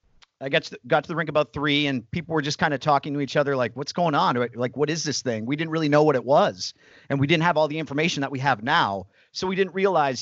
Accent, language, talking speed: American, English, 290 wpm